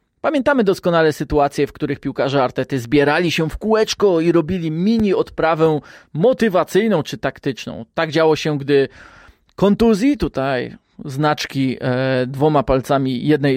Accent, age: native, 20-39